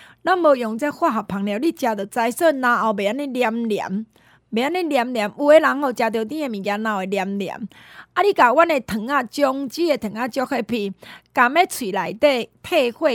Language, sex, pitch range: Chinese, female, 215-295 Hz